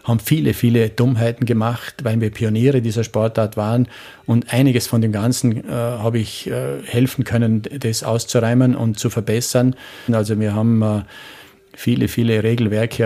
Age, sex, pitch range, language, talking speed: 40-59, male, 105-115 Hz, German, 155 wpm